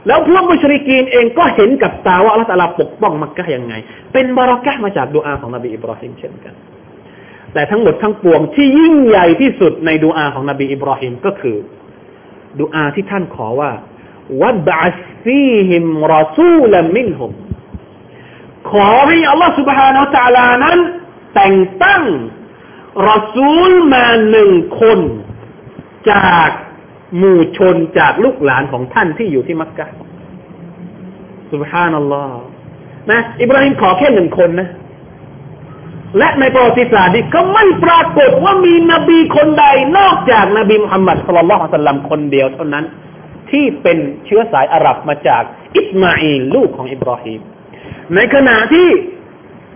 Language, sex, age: Thai, male, 30-49